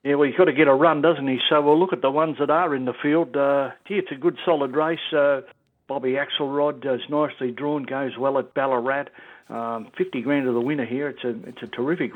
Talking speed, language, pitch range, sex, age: 250 wpm, English, 125-150 Hz, male, 60-79